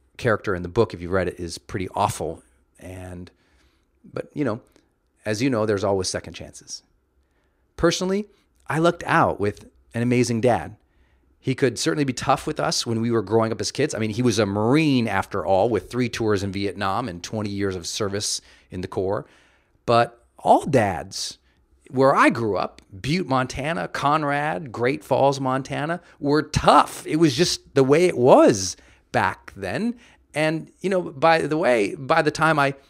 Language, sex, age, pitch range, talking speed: English, male, 40-59, 95-135 Hz, 180 wpm